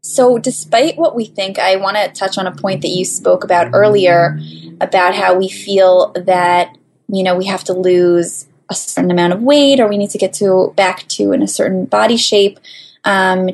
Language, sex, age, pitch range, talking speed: English, female, 20-39, 185-220 Hz, 210 wpm